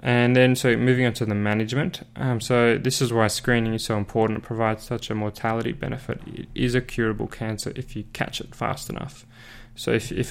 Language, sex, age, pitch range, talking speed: English, male, 10-29, 110-125 Hz, 215 wpm